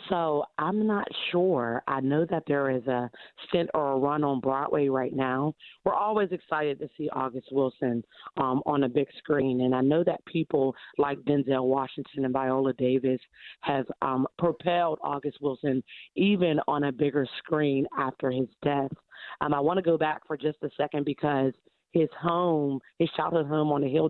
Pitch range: 140-160 Hz